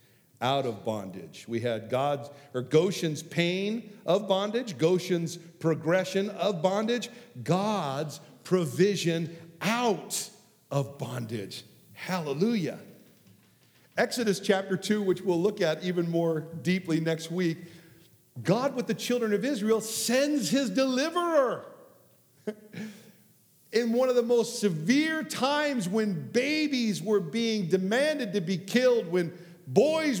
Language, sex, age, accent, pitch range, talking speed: English, male, 50-69, American, 135-215 Hz, 115 wpm